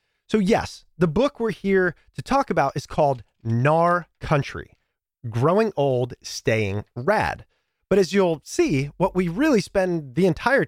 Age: 30-49